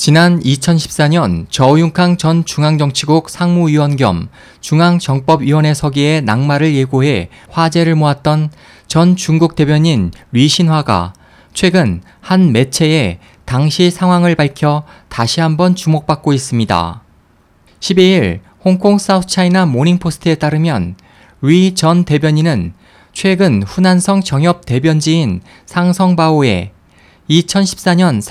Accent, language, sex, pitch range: native, Korean, male, 125-175 Hz